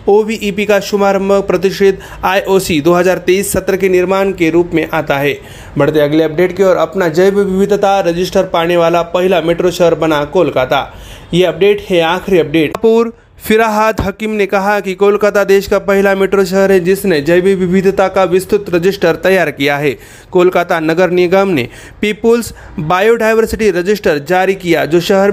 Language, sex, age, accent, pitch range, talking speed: Marathi, male, 30-49, native, 170-195 Hz, 160 wpm